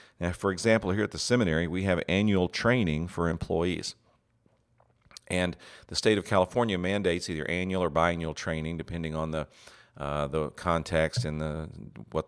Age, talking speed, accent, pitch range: 50-69, 160 wpm, American, 80-95 Hz